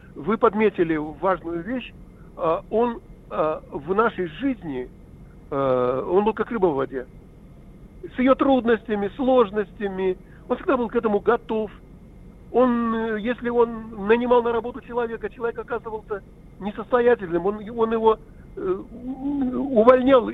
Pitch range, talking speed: 175-230 Hz, 110 wpm